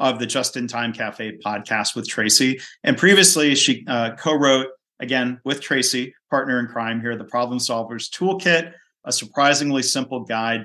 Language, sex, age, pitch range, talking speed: English, male, 40-59, 110-130 Hz, 165 wpm